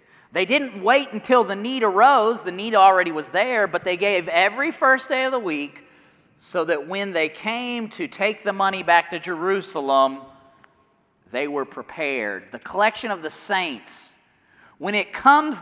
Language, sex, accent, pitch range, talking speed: English, male, American, 185-240 Hz, 170 wpm